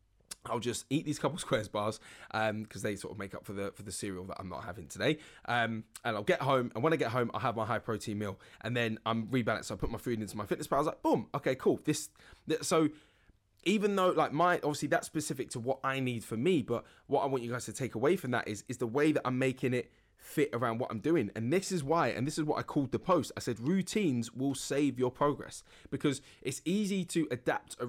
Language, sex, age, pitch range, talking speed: English, male, 20-39, 115-160 Hz, 265 wpm